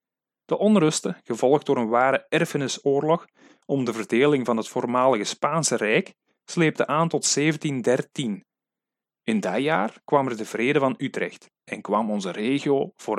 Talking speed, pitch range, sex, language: 150 wpm, 125-180 Hz, male, Dutch